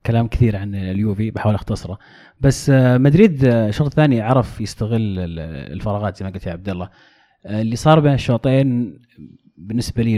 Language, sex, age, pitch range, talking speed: Arabic, male, 30-49, 100-125 Hz, 145 wpm